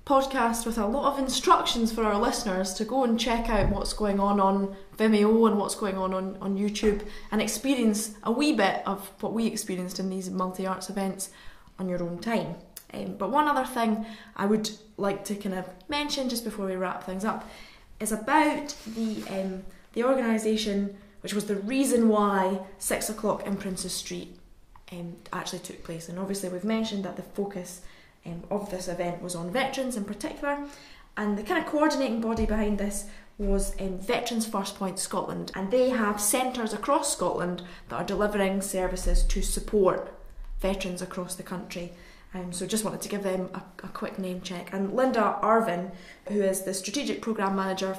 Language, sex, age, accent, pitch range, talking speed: English, female, 10-29, British, 185-225 Hz, 185 wpm